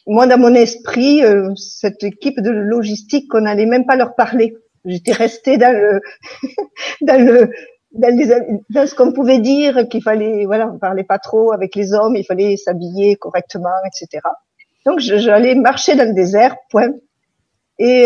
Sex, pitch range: female, 195-250 Hz